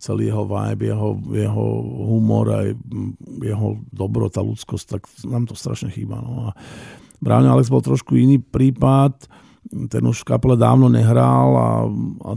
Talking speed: 150 wpm